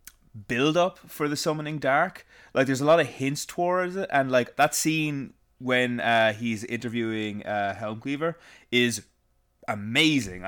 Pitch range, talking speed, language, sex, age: 110-135 Hz, 155 wpm, English, male, 20-39